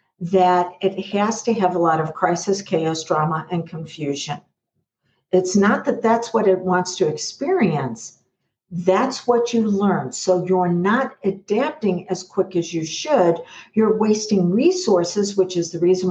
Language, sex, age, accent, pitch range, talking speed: English, female, 60-79, American, 180-220 Hz, 155 wpm